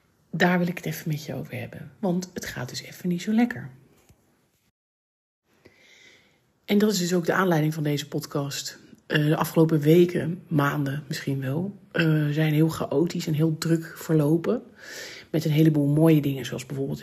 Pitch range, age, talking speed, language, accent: 150-175 Hz, 40-59, 165 wpm, Dutch, Dutch